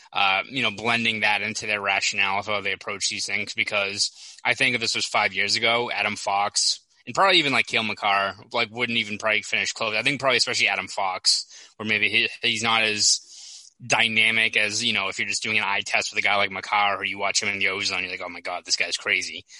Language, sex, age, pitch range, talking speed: English, male, 20-39, 100-115 Hz, 245 wpm